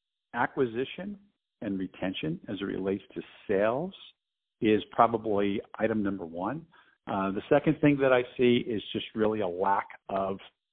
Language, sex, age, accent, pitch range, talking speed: English, male, 50-69, American, 95-115 Hz, 145 wpm